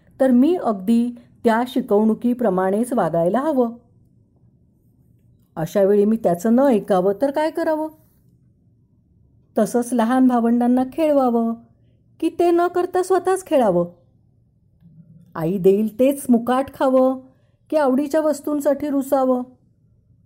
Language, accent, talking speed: Marathi, native, 105 wpm